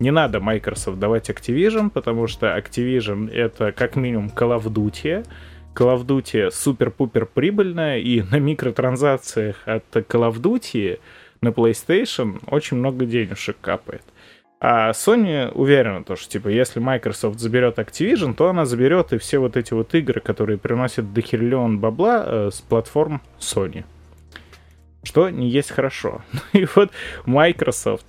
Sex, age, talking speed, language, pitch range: male, 20-39, 140 wpm, Russian, 115-155 Hz